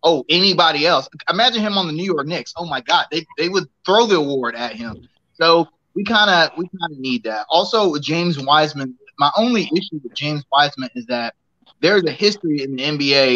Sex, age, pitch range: male, 20-39, 135-180 Hz